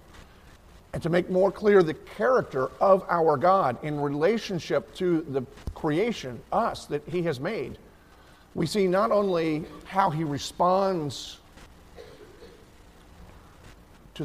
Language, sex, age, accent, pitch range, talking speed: English, male, 50-69, American, 100-150 Hz, 120 wpm